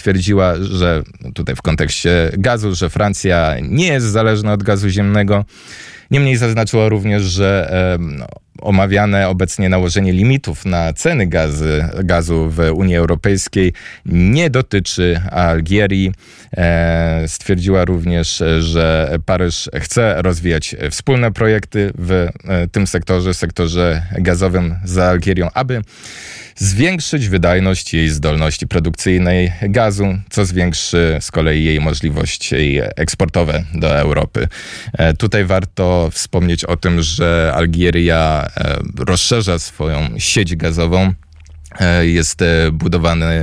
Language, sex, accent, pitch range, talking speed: Polish, male, native, 80-100 Hz, 105 wpm